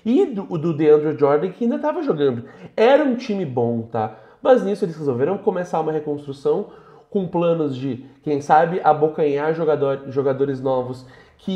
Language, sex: Portuguese, male